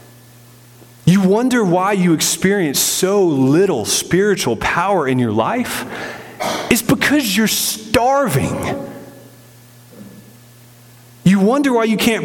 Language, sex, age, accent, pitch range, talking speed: English, male, 30-49, American, 135-200 Hz, 105 wpm